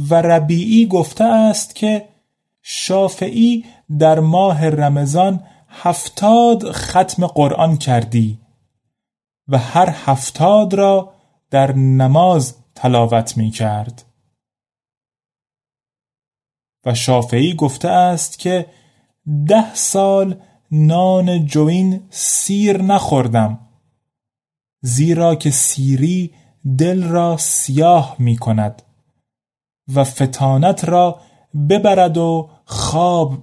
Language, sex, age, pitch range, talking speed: Persian, male, 30-49, 135-185 Hz, 85 wpm